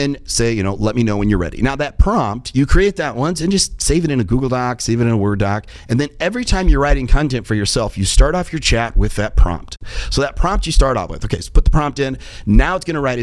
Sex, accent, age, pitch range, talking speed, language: male, American, 40-59, 105-150 Hz, 295 wpm, English